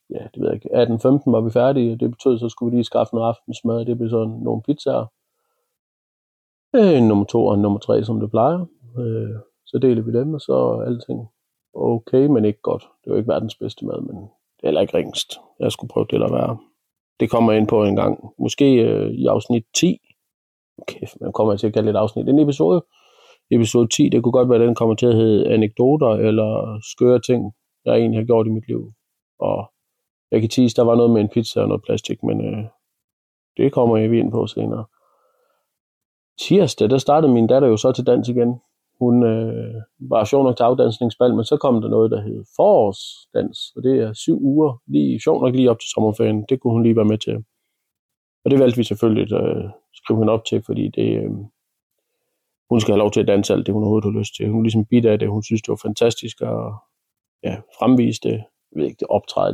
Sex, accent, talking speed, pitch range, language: male, native, 220 wpm, 110-125 Hz, Danish